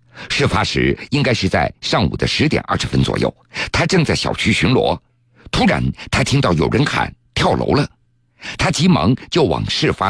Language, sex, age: Chinese, male, 50-69